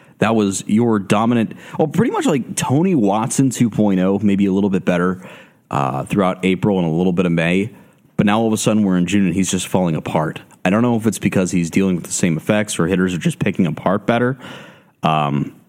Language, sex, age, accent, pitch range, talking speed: English, male, 30-49, American, 90-120 Hz, 225 wpm